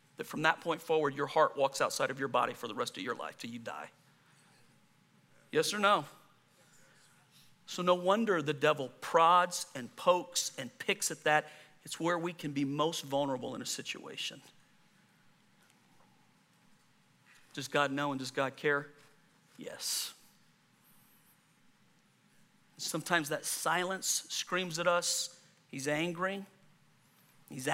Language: English